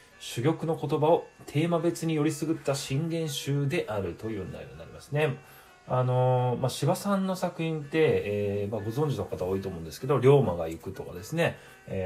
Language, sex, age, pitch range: Japanese, male, 20-39, 105-155 Hz